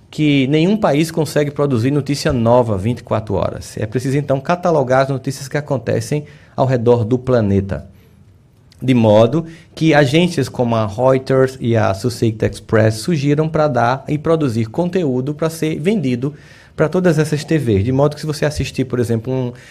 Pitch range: 100-135 Hz